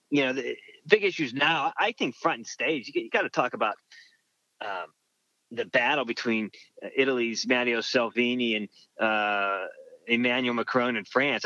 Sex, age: male, 30-49